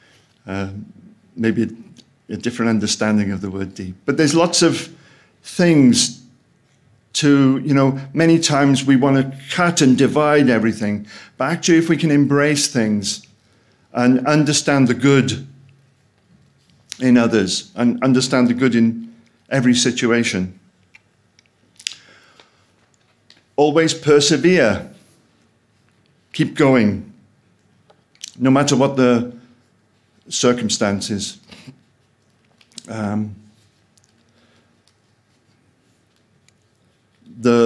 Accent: British